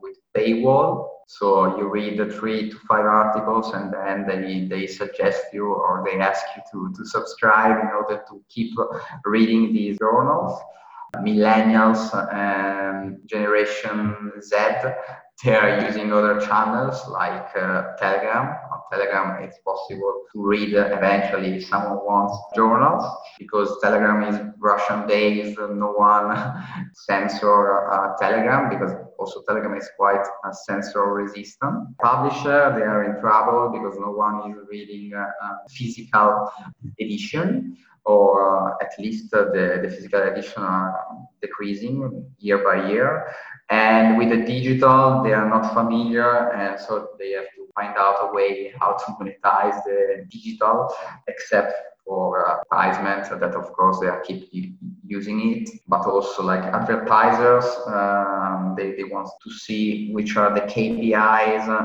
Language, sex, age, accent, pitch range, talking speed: English, male, 20-39, Italian, 100-120 Hz, 135 wpm